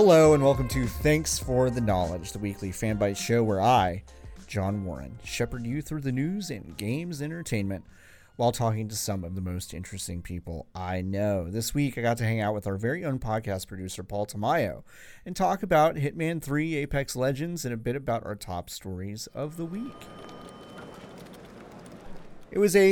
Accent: American